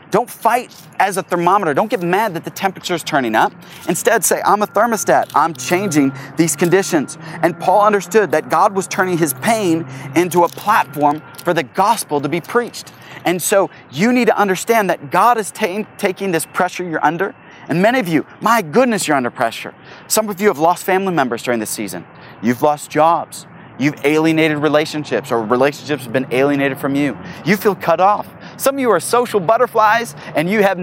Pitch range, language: 155-205 Hz, English